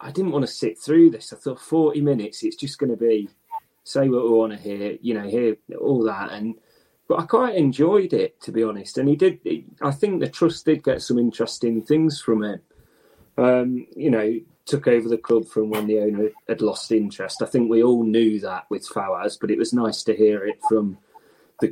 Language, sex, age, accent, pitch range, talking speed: English, male, 30-49, British, 105-125 Hz, 225 wpm